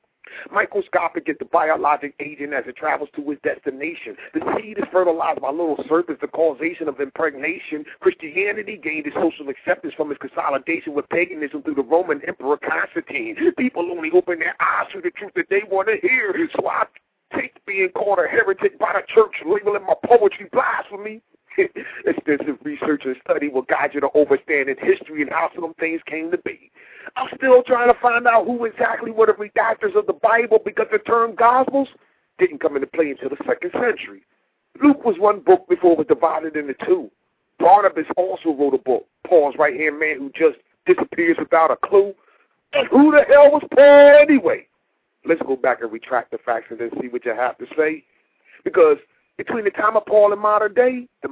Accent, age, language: American, 40-59, English